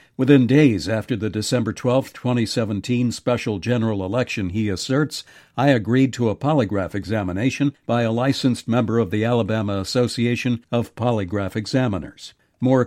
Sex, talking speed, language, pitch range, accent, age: male, 140 wpm, English, 105-130 Hz, American, 60-79